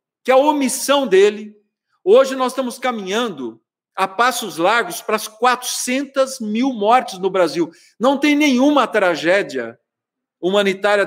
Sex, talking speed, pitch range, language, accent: male, 125 wpm, 205-270 Hz, Portuguese, Brazilian